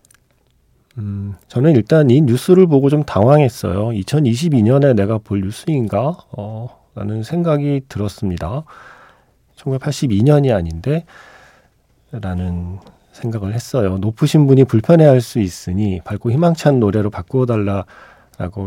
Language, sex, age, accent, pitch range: Korean, male, 40-59, native, 95-135 Hz